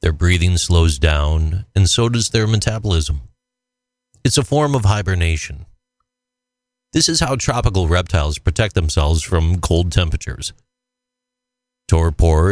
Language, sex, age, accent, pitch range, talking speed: English, male, 40-59, American, 85-135 Hz, 120 wpm